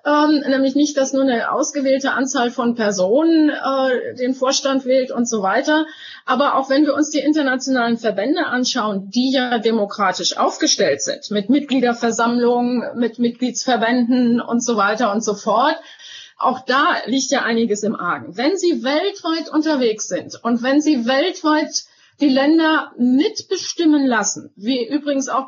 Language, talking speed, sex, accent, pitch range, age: German, 150 wpm, female, German, 240-295 Hz, 30-49